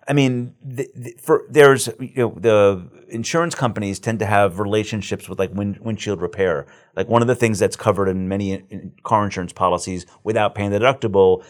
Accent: American